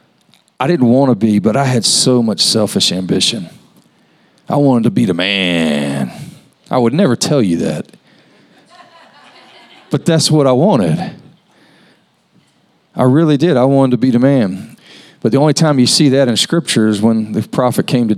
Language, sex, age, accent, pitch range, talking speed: English, male, 40-59, American, 125-165 Hz, 175 wpm